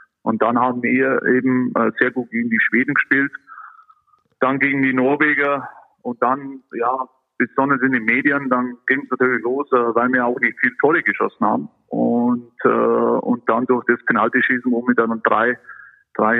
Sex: male